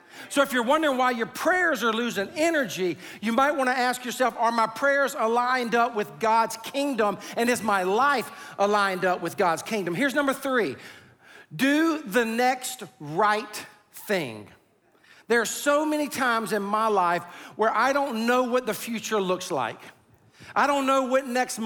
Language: English